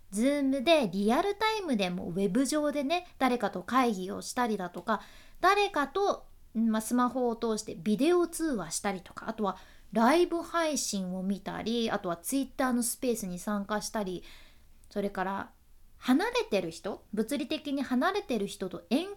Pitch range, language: 205-330 Hz, Japanese